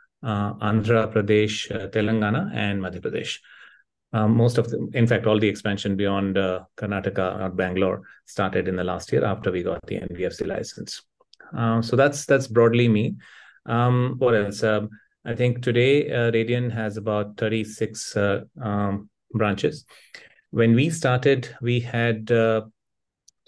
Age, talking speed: 30-49, 155 wpm